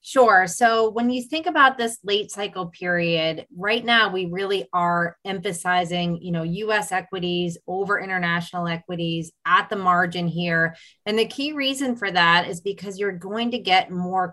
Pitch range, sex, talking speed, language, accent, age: 175-215 Hz, female, 170 wpm, English, American, 30-49